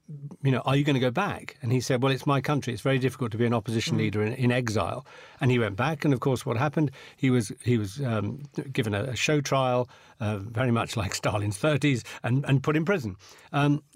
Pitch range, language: 110-140 Hz, English